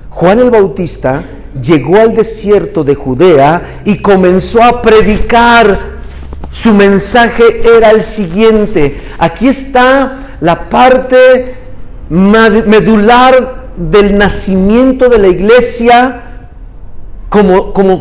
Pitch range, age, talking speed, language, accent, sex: 185-240 Hz, 50-69, 95 wpm, Spanish, Mexican, male